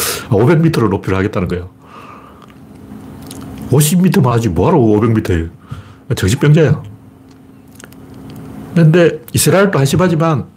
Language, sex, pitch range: Korean, male, 105-165 Hz